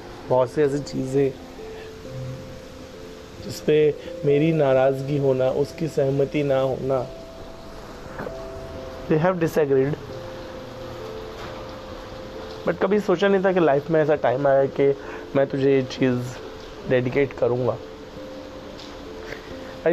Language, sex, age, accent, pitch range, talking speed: Hindi, male, 30-49, native, 105-155 Hz, 100 wpm